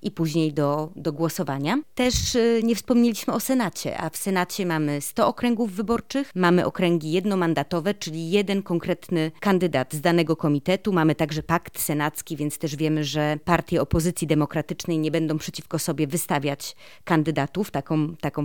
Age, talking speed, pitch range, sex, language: 20-39, 150 wpm, 155-200 Hz, female, Polish